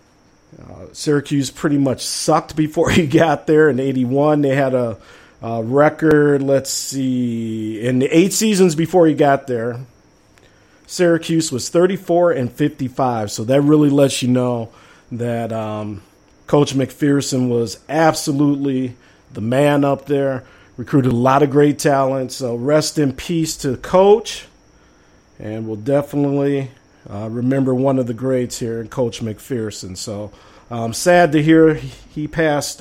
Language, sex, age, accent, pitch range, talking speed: English, male, 50-69, American, 110-145 Hz, 145 wpm